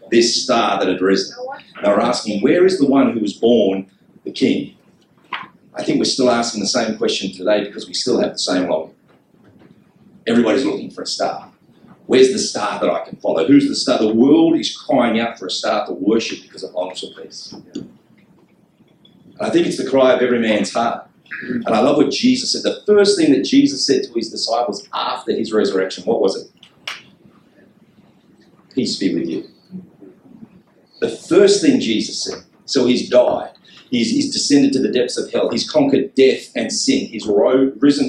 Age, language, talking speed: 40-59, English, 190 wpm